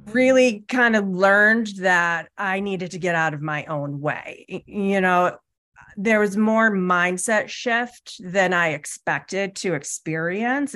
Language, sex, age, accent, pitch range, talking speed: English, female, 30-49, American, 165-205 Hz, 145 wpm